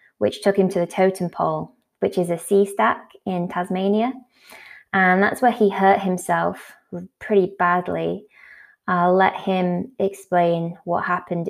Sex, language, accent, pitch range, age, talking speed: female, English, British, 170-210 Hz, 20-39, 145 wpm